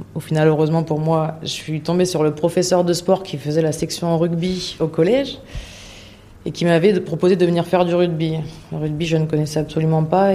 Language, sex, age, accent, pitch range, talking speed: French, female, 20-39, French, 155-175 Hz, 210 wpm